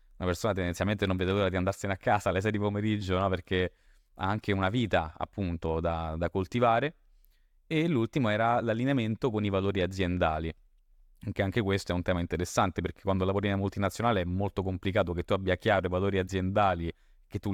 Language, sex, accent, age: Italian, male, native, 20-39